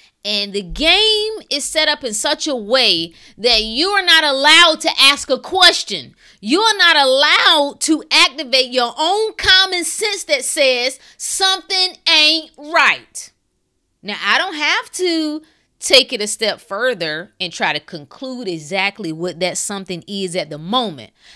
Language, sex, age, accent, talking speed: English, female, 30-49, American, 155 wpm